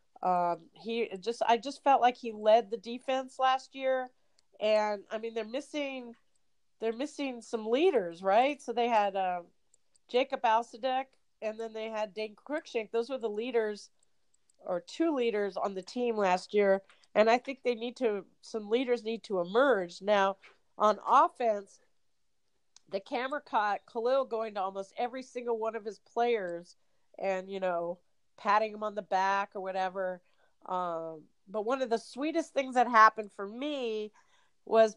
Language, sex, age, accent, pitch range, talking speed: English, female, 40-59, American, 200-260 Hz, 165 wpm